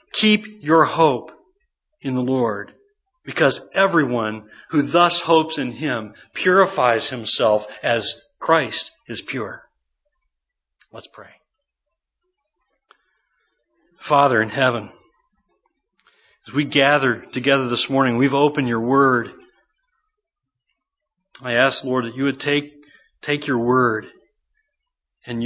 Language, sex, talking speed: English, male, 110 wpm